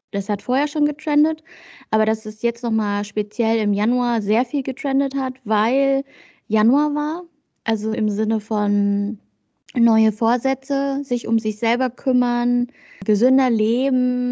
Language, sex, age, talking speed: German, female, 20-39, 140 wpm